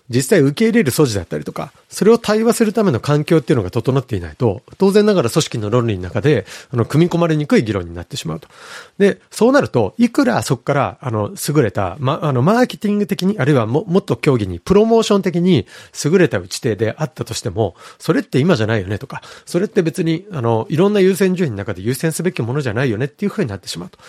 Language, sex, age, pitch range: Japanese, male, 40-59, 115-170 Hz